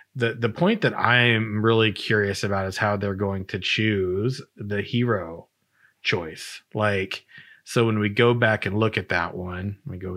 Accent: American